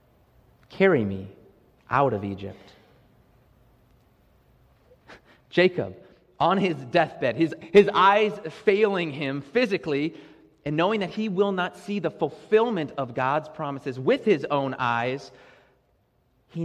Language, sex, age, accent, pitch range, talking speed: English, male, 30-49, American, 115-175 Hz, 115 wpm